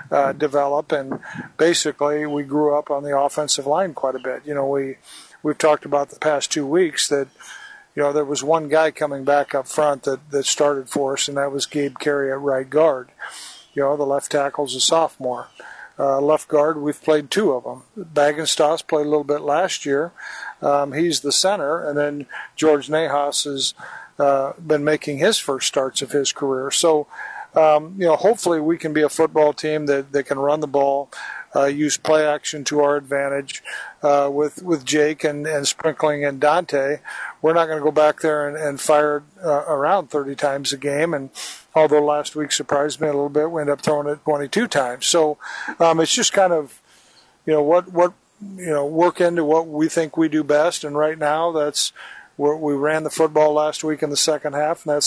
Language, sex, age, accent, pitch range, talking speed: English, male, 50-69, American, 145-155 Hz, 205 wpm